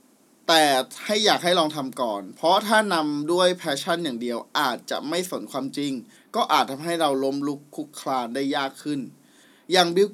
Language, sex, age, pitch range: Thai, male, 20-39, 135-185 Hz